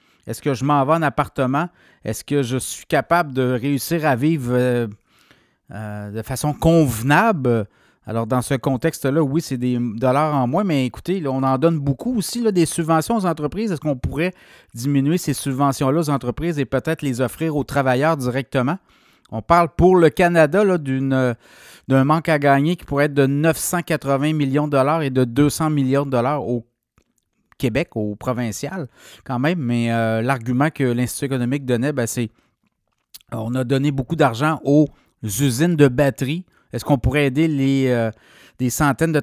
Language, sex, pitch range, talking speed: French, male, 130-160 Hz, 175 wpm